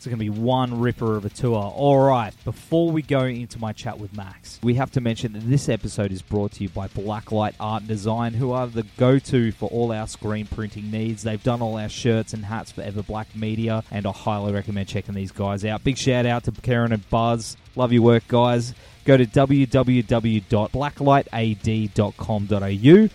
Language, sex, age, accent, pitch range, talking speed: English, male, 20-39, Australian, 105-125 Hz, 200 wpm